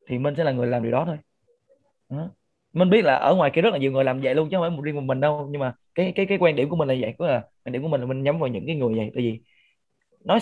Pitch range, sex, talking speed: 125-170 Hz, male, 330 wpm